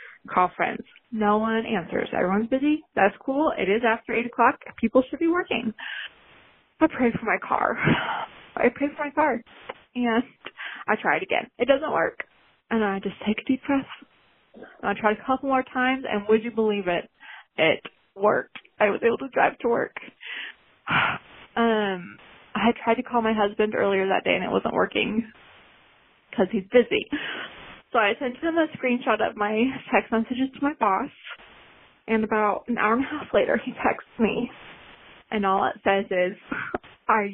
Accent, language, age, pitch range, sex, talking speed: American, English, 20-39, 205-260 Hz, female, 175 wpm